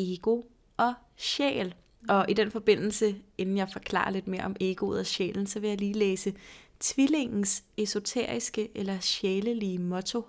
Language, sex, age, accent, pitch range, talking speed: Danish, female, 30-49, native, 190-225 Hz, 150 wpm